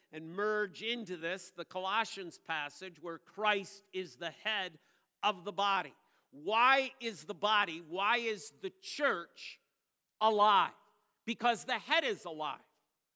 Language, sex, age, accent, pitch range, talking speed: English, male, 50-69, American, 170-230 Hz, 130 wpm